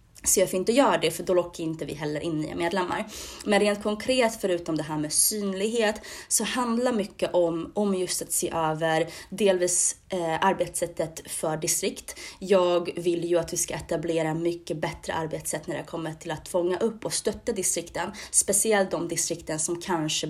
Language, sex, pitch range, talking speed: Swedish, female, 160-195 Hz, 180 wpm